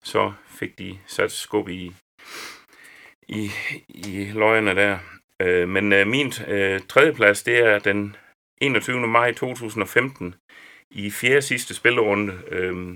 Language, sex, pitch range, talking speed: Danish, male, 95-110 Hz, 105 wpm